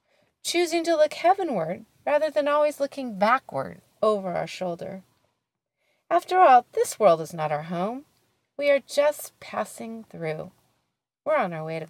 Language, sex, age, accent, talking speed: English, female, 30-49, American, 150 wpm